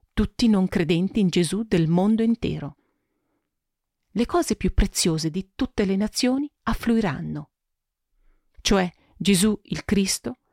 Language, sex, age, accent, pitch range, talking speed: Italian, female, 40-59, native, 165-220 Hz, 120 wpm